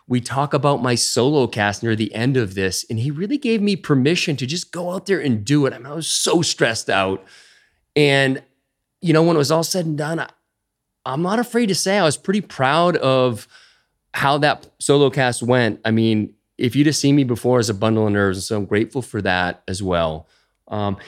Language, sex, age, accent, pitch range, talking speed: English, male, 30-49, American, 110-160 Hz, 220 wpm